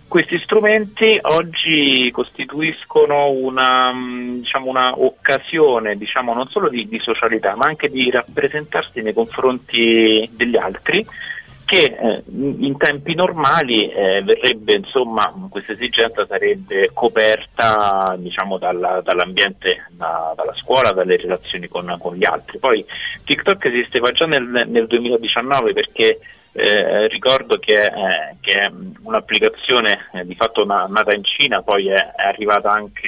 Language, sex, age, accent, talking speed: Italian, male, 30-49, native, 125 wpm